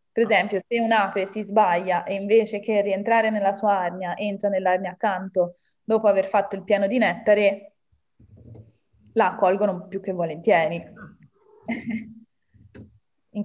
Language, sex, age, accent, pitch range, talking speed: Italian, female, 20-39, native, 185-210 Hz, 130 wpm